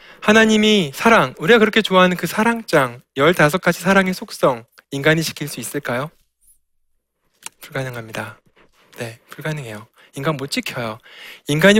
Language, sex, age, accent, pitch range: Korean, male, 20-39, native, 140-215 Hz